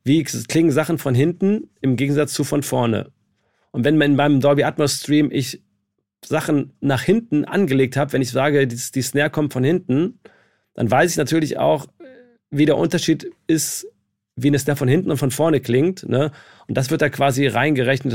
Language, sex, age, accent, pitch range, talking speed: German, male, 40-59, German, 120-145 Hz, 190 wpm